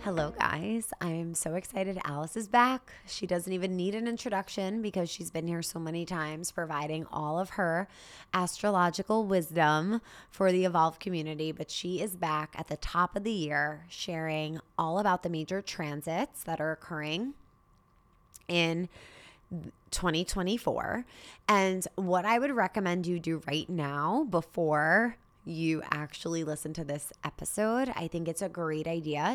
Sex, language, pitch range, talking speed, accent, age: female, English, 160-195 Hz, 150 wpm, American, 20-39